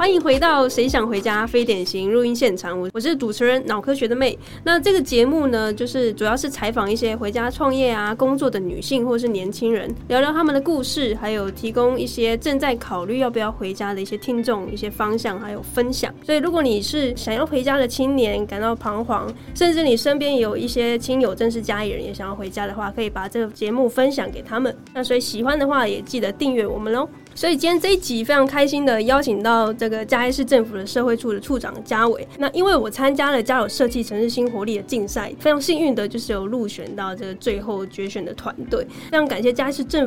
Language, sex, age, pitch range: Chinese, female, 20-39, 215-265 Hz